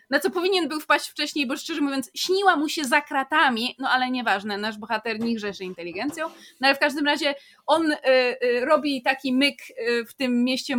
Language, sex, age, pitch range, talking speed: Polish, female, 20-39, 245-300 Hz, 200 wpm